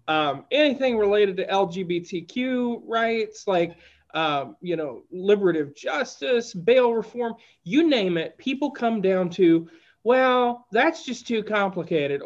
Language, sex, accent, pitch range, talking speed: English, male, American, 180-280 Hz, 125 wpm